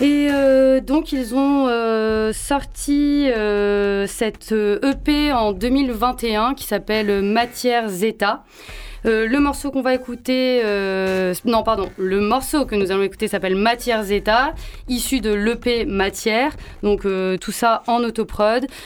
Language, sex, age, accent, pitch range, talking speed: French, female, 20-39, French, 215-265 Hz, 140 wpm